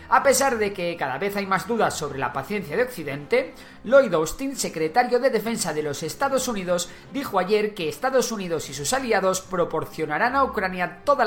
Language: Spanish